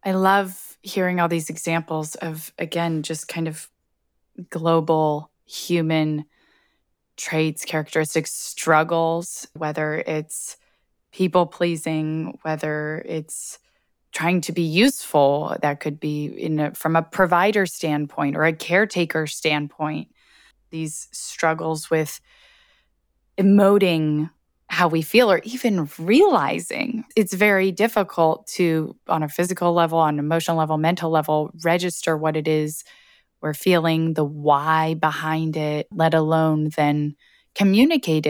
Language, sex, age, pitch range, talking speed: English, female, 20-39, 155-170 Hz, 120 wpm